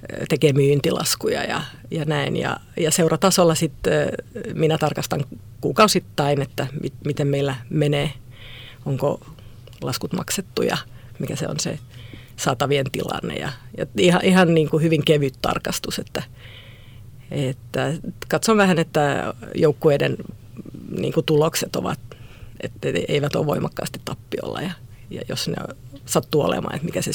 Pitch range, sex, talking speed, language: 120-180 Hz, female, 130 wpm, Finnish